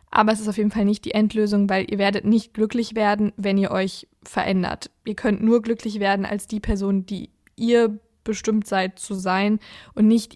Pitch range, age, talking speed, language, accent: 205-235 Hz, 20-39, 205 wpm, German, German